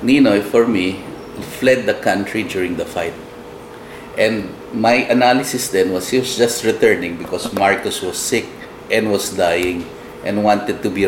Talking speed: 155 wpm